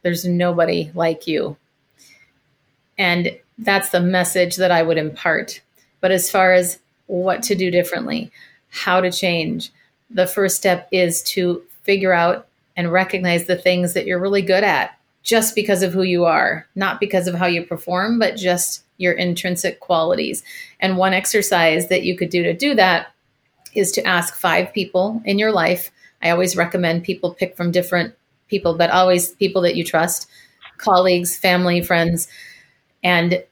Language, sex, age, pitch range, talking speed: English, female, 30-49, 170-195 Hz, 165 wpm